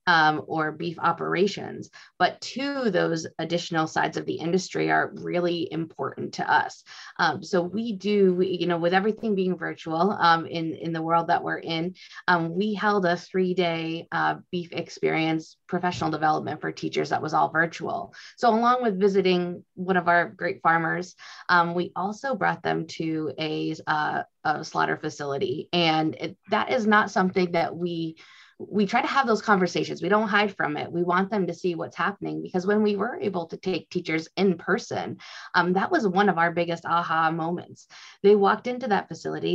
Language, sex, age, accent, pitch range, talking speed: English, female, 20-39, American, 165-205 Hz, 180 wpm